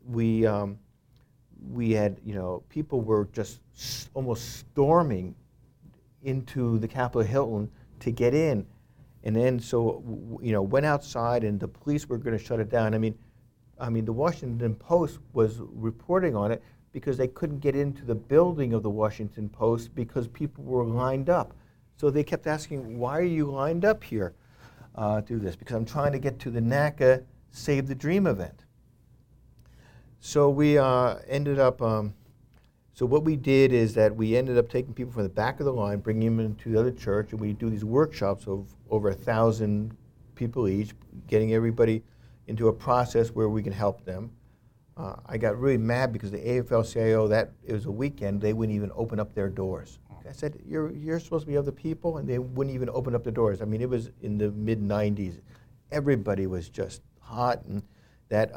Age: 50-69